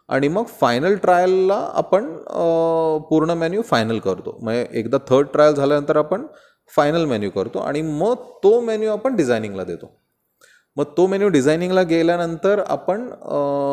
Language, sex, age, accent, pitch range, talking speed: Hindi, male, 20-39, native, 120-170 Hz, 110 wpm